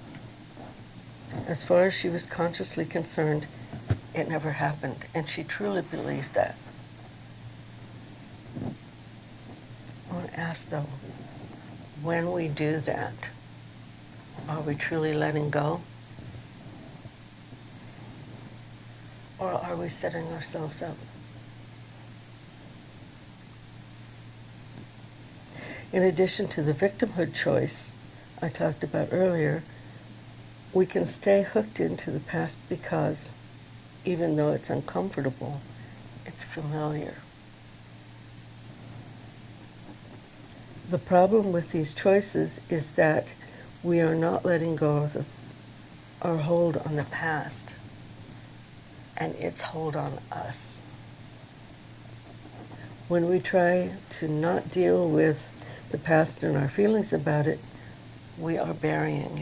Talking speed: 100 wpm